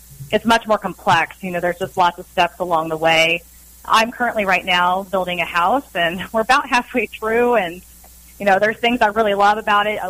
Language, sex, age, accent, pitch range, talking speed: English, female, 30-49, American, 175-215 Hz, 220 wpm